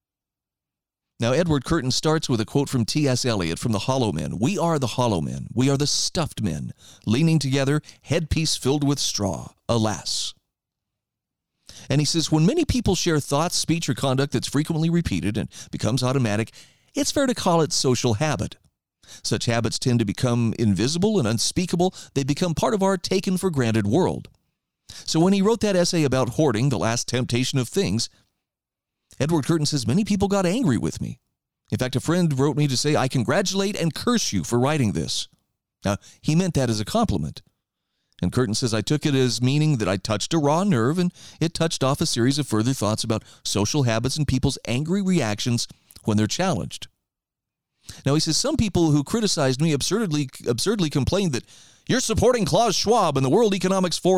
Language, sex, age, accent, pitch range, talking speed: English, male, 40-59, American, 120-170 Hz, 185 wpm